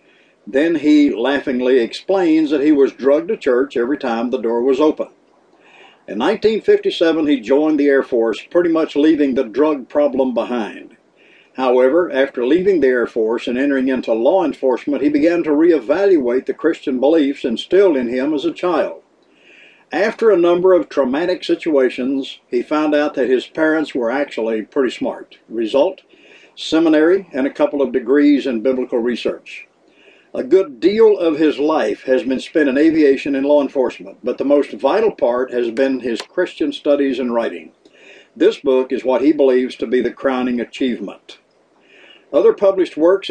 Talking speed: 165 wpm